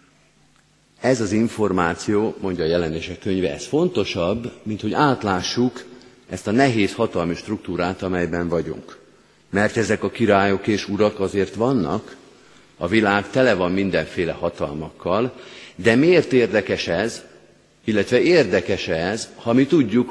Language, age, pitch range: Hungarian, 50-69, 90-115 Hz